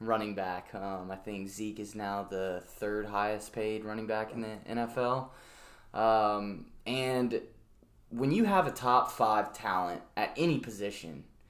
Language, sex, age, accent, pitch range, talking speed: English, male, 20-39, American, 110-130 Hz, 150 wpm